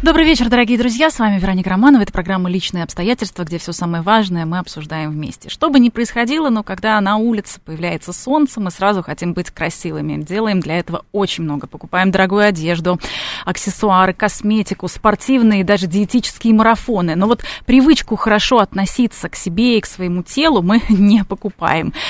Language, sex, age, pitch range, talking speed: Russian, female, 20-39, 180-230 Hz, 170 wpm